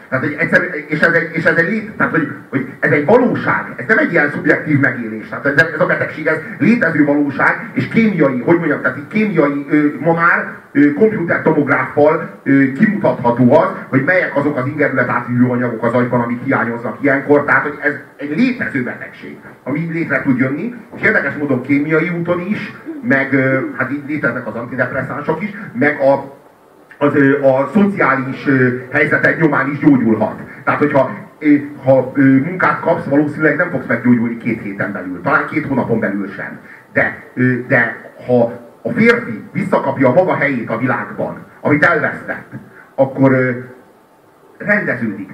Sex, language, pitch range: male, Hungarian, 130-170 Hz